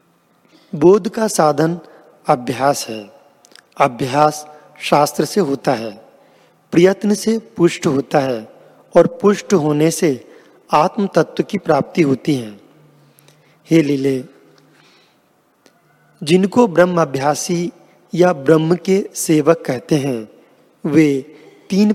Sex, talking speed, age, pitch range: male, 105 wpm, 40-59, 150-185 Hz